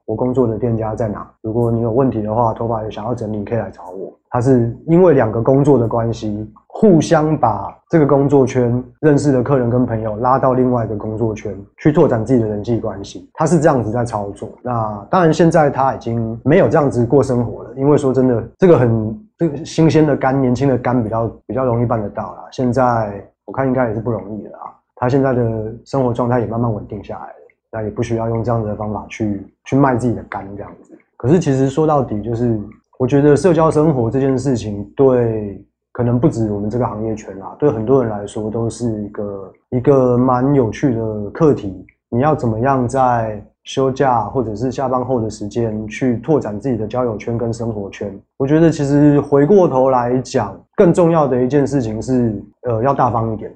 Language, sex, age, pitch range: Chinese, male, 20-39, 110-135 Hz